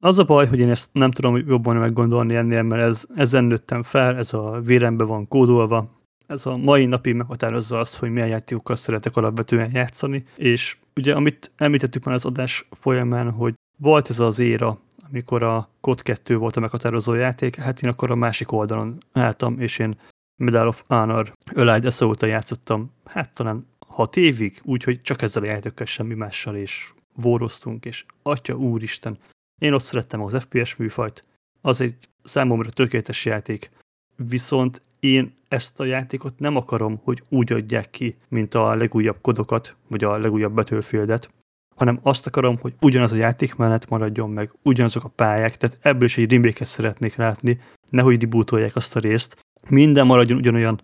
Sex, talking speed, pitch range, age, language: male, 170 wpm, 115-130 Hz, 30-49, Hungarian